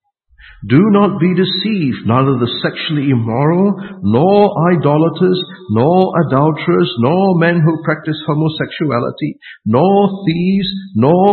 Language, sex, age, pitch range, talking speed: English, male, 50-69, 125-190 Hz, 105 wpm